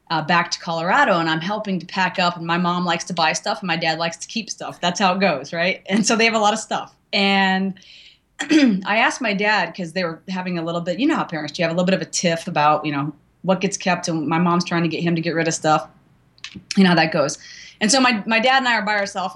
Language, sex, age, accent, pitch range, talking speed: English, female, 30-49, American, 175-245 Hz, 295 wpm